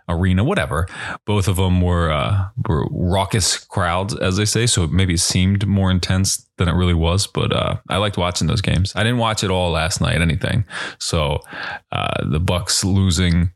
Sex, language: male, English